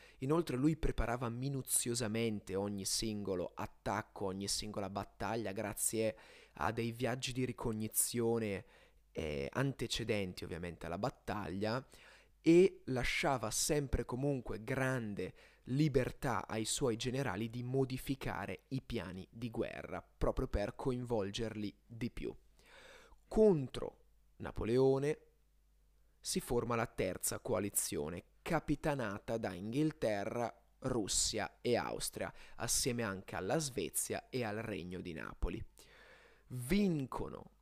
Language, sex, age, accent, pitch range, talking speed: Italian, male, 30-49, native, 105-135 Hz, 100 wpm